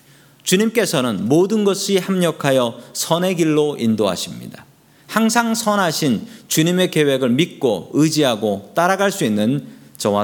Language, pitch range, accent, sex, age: Korean, 130-170 Hz, native, male, 40-59